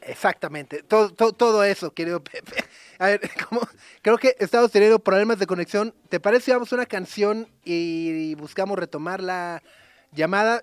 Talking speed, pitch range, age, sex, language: 165 wpm, 155-195 Hz, 30-49, male, Spanish